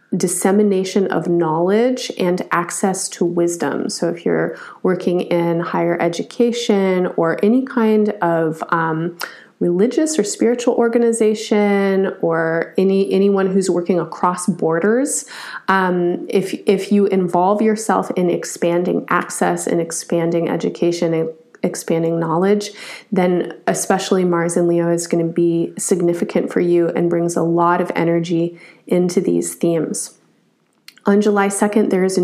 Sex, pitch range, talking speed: female, 170-200 Hz, 135 wpm